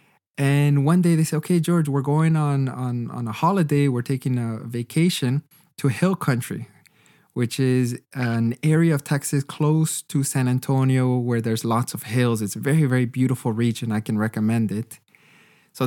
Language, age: English, 20-39